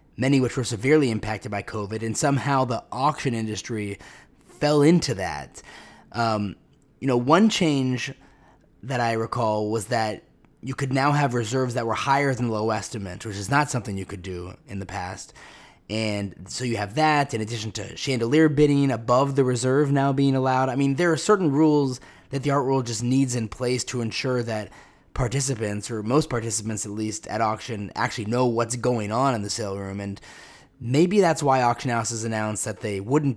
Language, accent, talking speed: English, American, 190 wpm